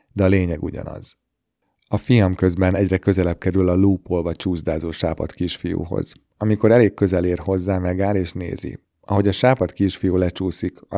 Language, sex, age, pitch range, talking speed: Hungarian, male, 30-49, 90-100 Hz, 160 wpm